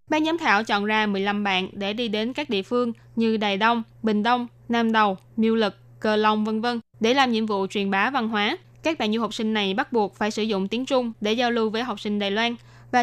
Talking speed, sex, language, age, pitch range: 255 wpm, female, Vietnamese, 10-29, 205-245 Hz